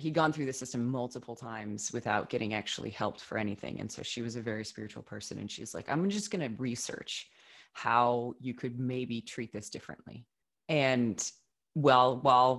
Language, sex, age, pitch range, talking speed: English, female, 20-39, 115-140 Hz, 185 wpm